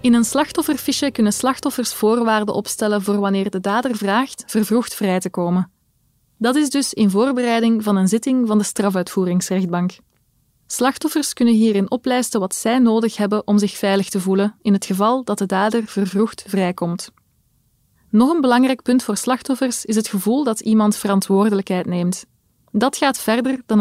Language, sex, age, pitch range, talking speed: Dutch, female, 20-39, 190-235 Hz, 165 wpm